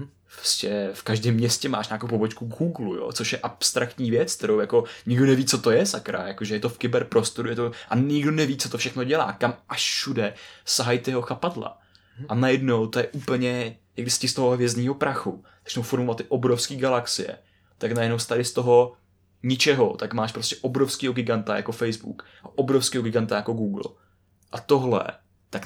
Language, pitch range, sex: Czech, 115-130 Hz, male